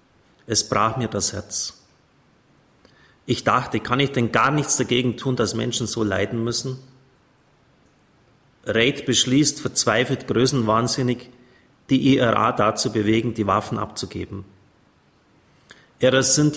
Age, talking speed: 30-49, 115 wpm